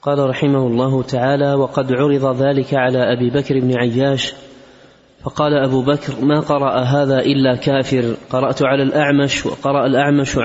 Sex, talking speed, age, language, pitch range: male, 145 wpm, 30-49, Arabic, 130-140 Hz